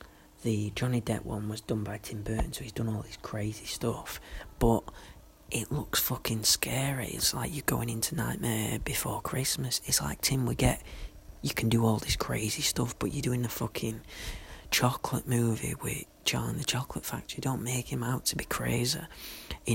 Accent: British